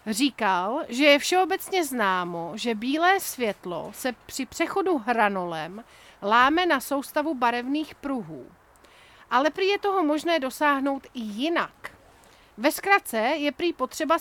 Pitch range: 240-310 Hz